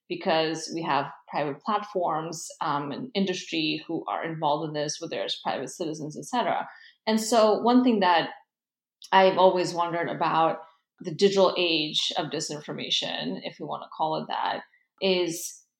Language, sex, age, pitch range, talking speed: English, female, 20-39, 165-200 Hz, 155 wpm